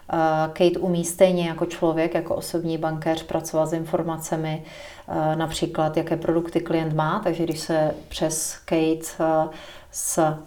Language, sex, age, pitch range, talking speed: Czech, female, 40-59, 155-175 Hz, 125 wpm